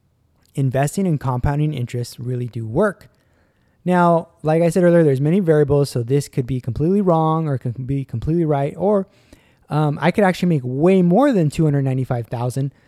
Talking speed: 170 wpm